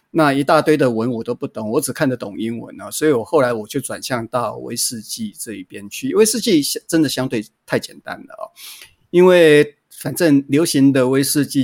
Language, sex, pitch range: Chinese, male, 120-155 Hz